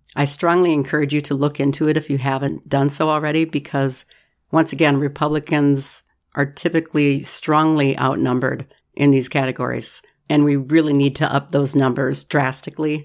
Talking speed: 155 wpm